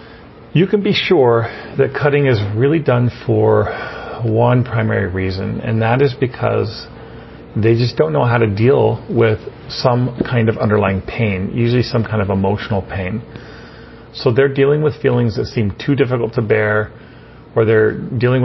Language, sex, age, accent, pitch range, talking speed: English, male, 40-59, American, 110-125 Hz, 165 wpm